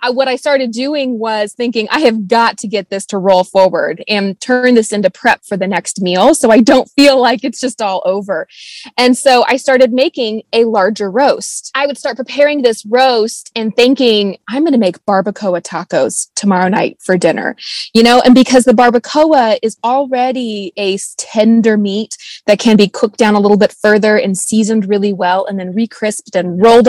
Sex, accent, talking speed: female, American, 195 wpm